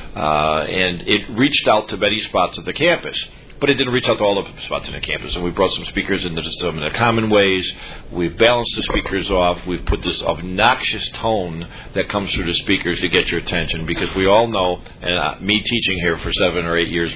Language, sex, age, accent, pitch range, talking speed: English, male, 50-69, American, 85-105 Hz, 230 wpm